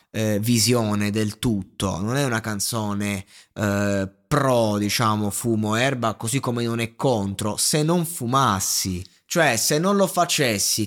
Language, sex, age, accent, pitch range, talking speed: Italian, male, 20-39, native, 110-145 Hz, 140 wpm